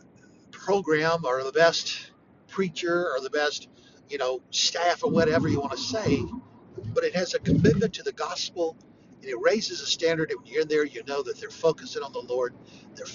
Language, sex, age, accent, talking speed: English, male, 60-79, American, 200 wpm